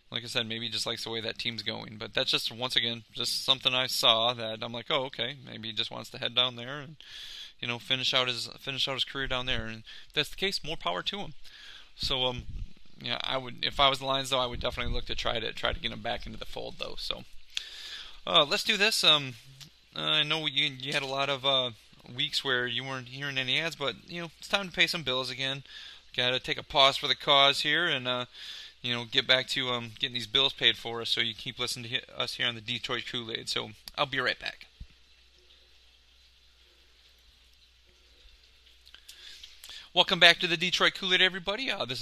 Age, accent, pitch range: 20-39, American, 115-140 Hz